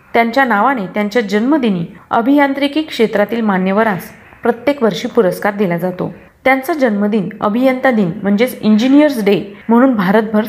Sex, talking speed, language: female, 125 wpm, Marathi